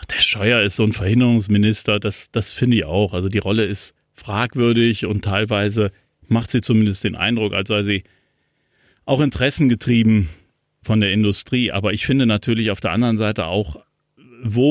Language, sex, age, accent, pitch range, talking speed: German, male, 40-59, German, 105-130 Hz, 170 wpm